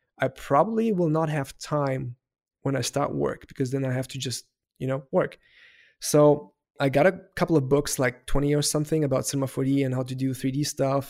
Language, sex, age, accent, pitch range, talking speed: English, male, 20-39, German, 130-150 Hz, 210 wpm